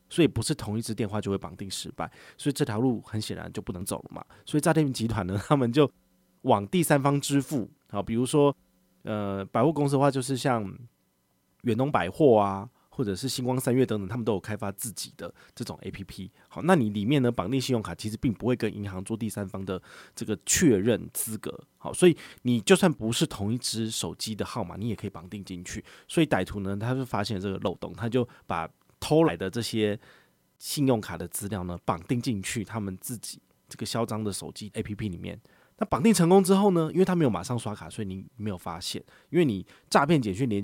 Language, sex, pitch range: Chinese, male, 95-130 Hz